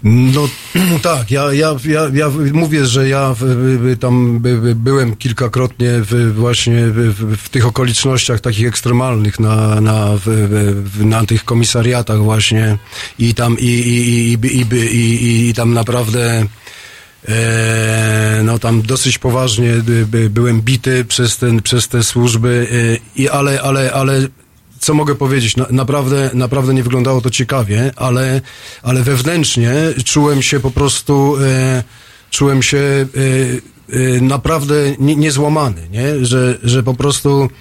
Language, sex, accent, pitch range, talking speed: Polish, male, native, 120-140 Hz, 150 wpm